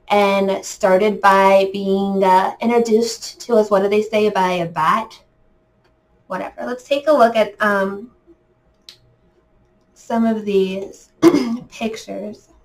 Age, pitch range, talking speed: 20-39, 195-225 Hz, 125 wpm